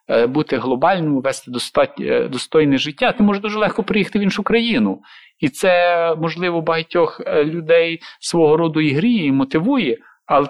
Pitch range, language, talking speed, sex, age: 130-175 Hz, English, 150 wpm, male, 50-69